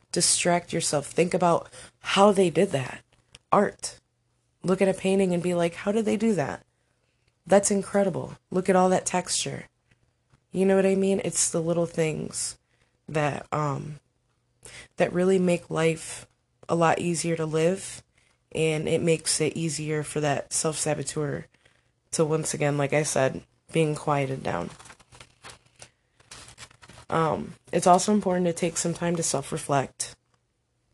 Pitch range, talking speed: 150-175 Hz, 145 wpm